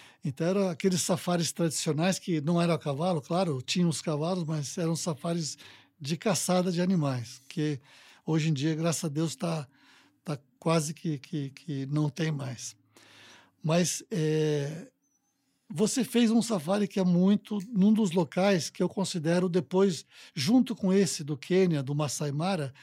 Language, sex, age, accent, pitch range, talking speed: Portuguese, male, 60-79, Brazilian, 160-195 Hz, 160 wpm